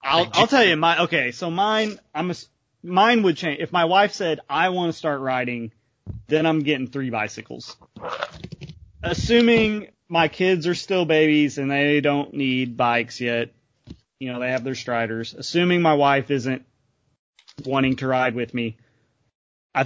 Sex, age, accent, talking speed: male, 30-49, American, 165 wpm